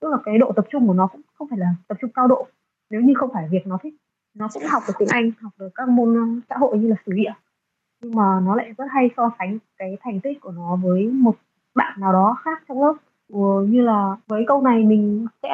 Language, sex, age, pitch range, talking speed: Vietnamese, female, 20-39, 200-245 Hz, 265 wpm